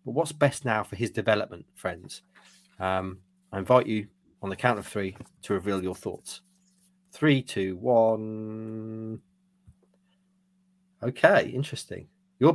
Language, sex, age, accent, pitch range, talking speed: English, male, 30-49, British, 95-135 Hz, 130 wpm